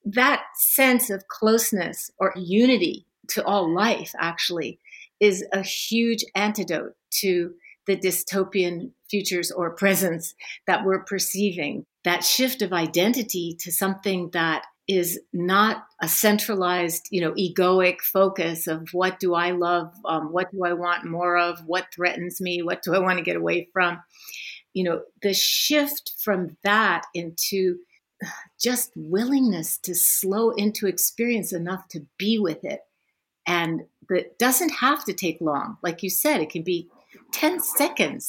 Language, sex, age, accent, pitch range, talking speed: English, female, 50-69, American, 175-215 Hz, 145 wpm